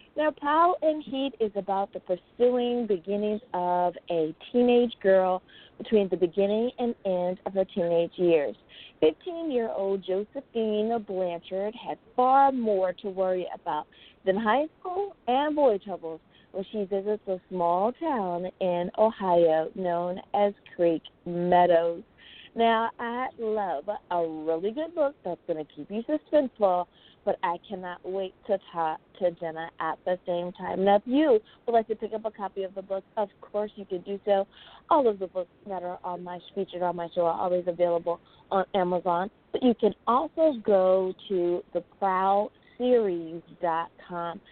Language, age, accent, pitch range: English, 40-59, American, 180-240 Hz